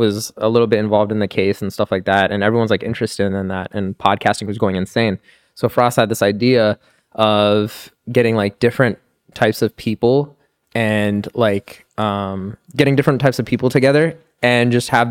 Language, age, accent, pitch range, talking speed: English, 20-39, American, 100-115 Hz, 185 wpm